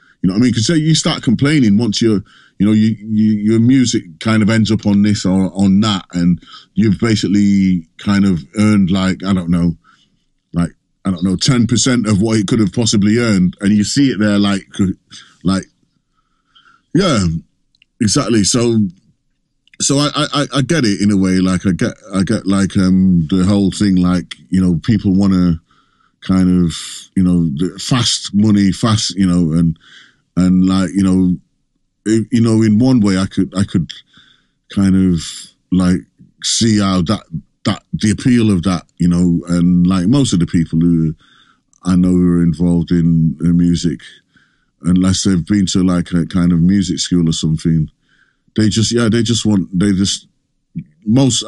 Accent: British